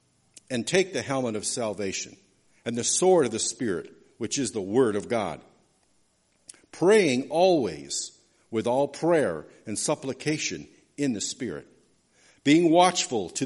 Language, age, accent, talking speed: English, 50-69, American, 140 wpm